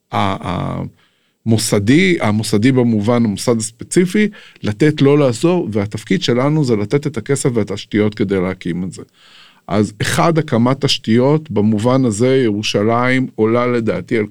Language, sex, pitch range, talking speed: Hebrew, male, 105-135 Hz, 125 wpm